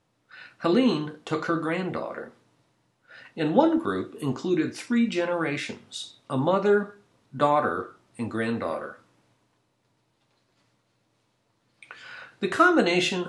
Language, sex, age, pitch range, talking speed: English, male, 50-69, 115-180 Hz, 75 wpm